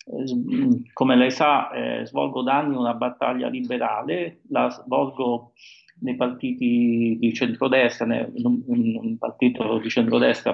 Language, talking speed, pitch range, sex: Italian, 125 wpm, 120-155 Hz, male